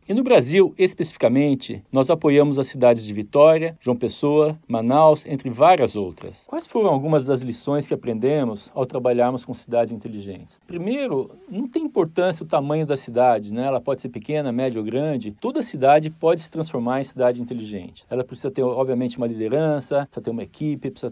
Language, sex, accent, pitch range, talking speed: Portuguese, male, Brazilian, 125-165 Hz, 180 wpm